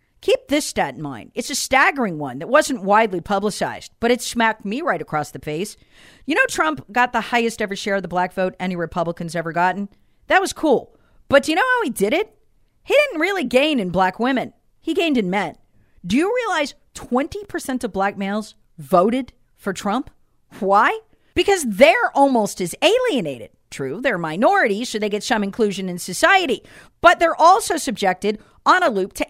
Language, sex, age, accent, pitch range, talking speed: English, female, 40-59, American, 200-300 Hz, 190 wpm